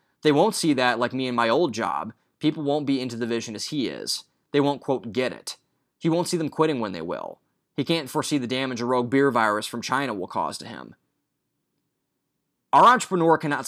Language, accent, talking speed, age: English, American, 220 wpm, 20-39